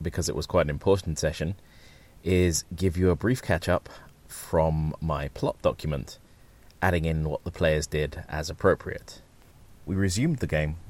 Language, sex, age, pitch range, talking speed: English, male, 30-49, 80-95 Hz, 160 wpm